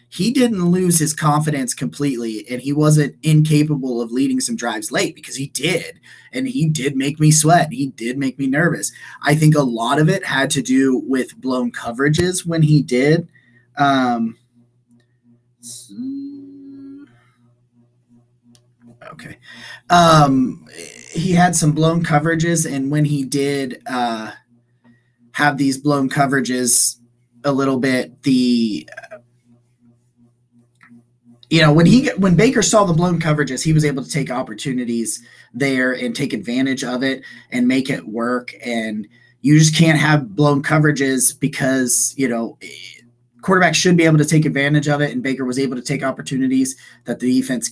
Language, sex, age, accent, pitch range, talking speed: English, male, 20-39, American, 120-155 Hz, 150 wpm